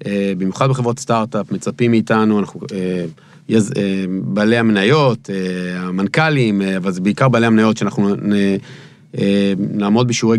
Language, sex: Hebrew, male